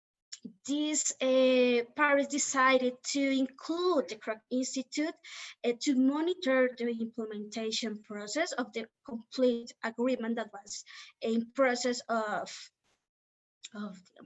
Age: 20-39